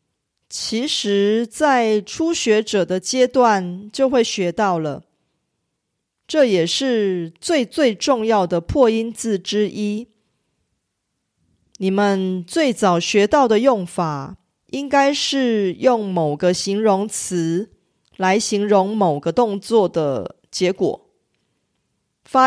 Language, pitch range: Korean, 175-255 Hz